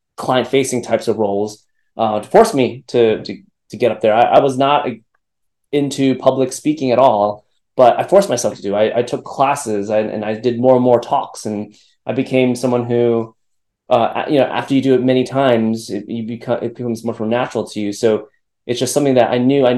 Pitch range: 115-130 Hz